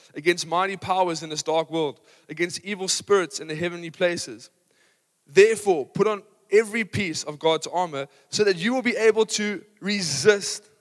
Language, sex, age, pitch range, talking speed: English, male, 20-39, 160-210 Hz, 165 wpm